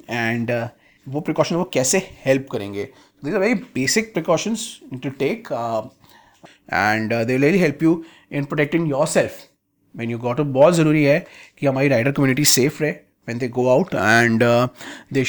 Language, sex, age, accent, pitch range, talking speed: Hindi, male, 30-49, native, 125-160 Hz, 150 wpm